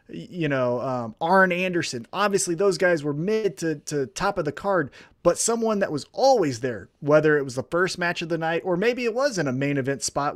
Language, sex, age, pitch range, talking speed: English, male, 30-49, 140-185 Hz, 230 wpm